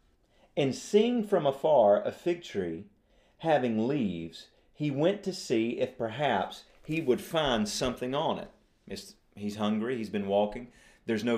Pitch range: 110-160 Hz